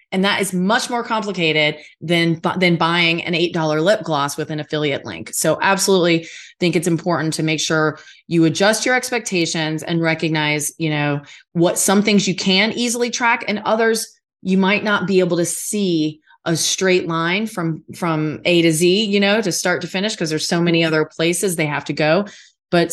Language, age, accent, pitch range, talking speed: English, 30-49, American, 165-205 Hz, 195 wpm